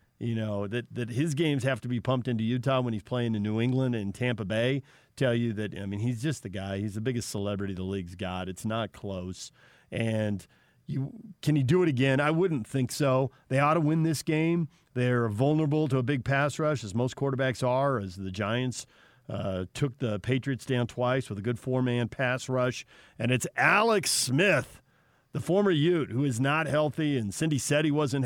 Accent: American